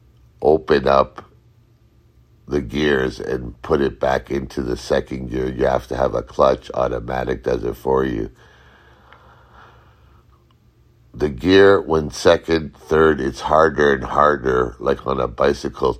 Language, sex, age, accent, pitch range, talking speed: English, male, 60-79, American, 65-75 Hz, 135 wpm